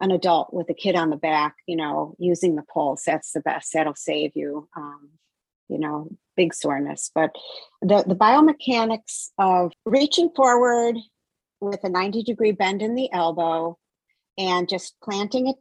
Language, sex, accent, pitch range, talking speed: English, female, American, 165-200 Hz, 165 wpm